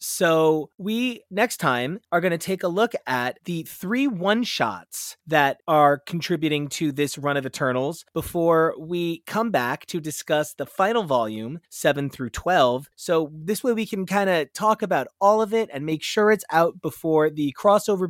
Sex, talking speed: male, 180 wpm